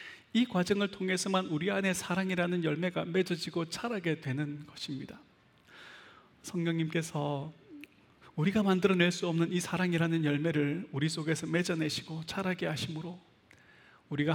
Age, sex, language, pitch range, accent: 30-49, male, Korean, 160-215 Hz, native